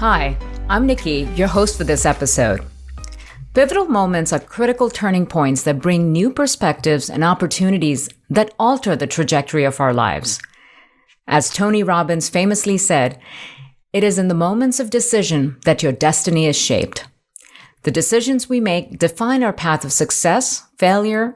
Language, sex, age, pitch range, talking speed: English, female, 50-69, 145-205 Hz, 150 wpm